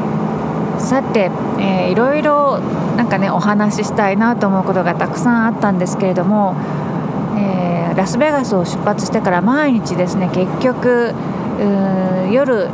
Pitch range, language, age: 190-235 Hz, Japanese, 40-59